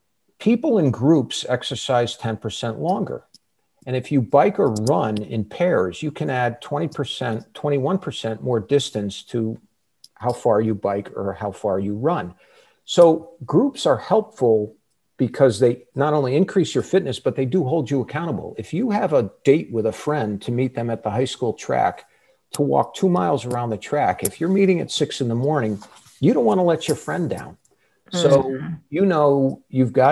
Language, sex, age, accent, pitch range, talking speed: English, male, 50-69, American, 110-155 Hz, 185 wpm